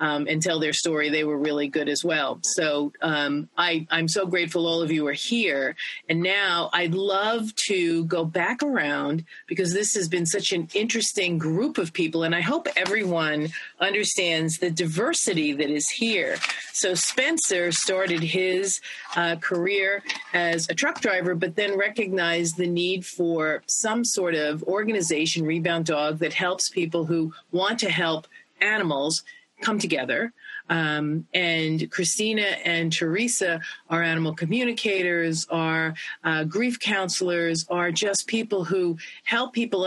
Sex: female